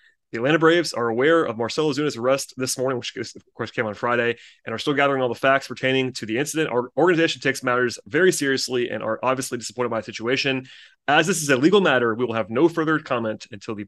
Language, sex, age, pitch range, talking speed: English, male, 30-49, 115-130 Hz, 240 wpm